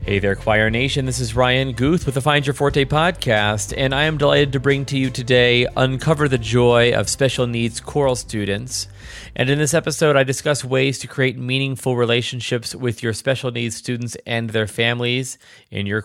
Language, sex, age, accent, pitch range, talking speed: English, male, 30-49, American, 105-130 Hz, 195 wpm